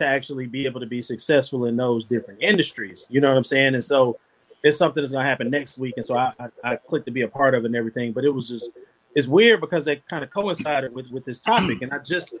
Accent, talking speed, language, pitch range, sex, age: American, 270 wpm, English, 125-165 Hz, male, 30-49